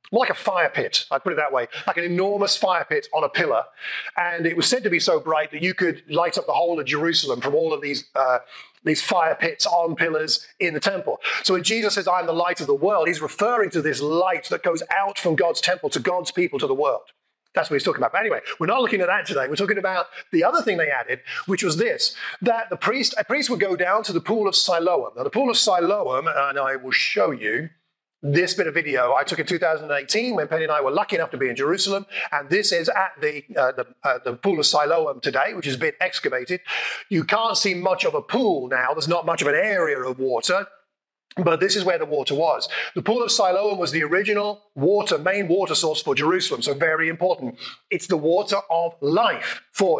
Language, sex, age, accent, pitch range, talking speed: English, male, 30-49, British, 165-220 Hz, 245 wpm